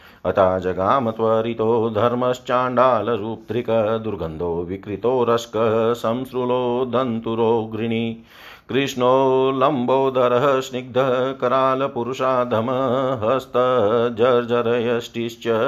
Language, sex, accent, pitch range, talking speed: Hindi, male, native, 115-125 Hz, 50 wpm